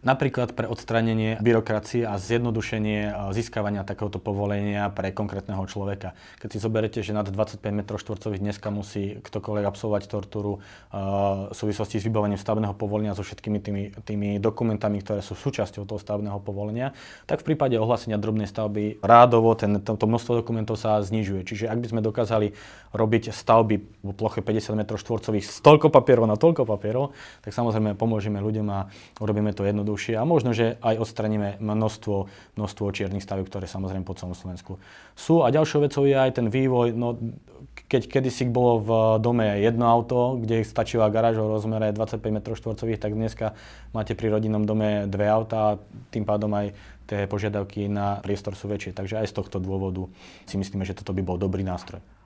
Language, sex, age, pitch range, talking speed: Slovak, male, 20-39, 100-115 Hz, 165 wpm